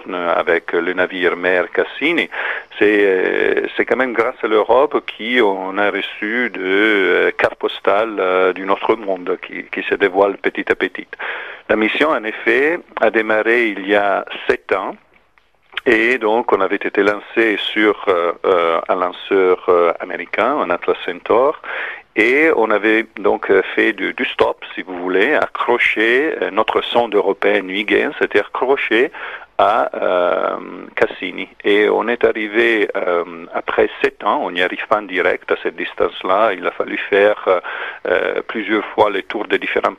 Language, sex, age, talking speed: French, male, 50-69, 155 wpm